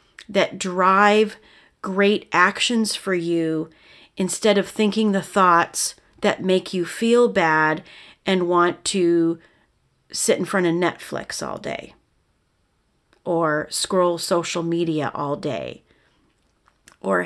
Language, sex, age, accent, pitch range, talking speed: English, female, 40-59, American, 170-220 Hz, 115 wpm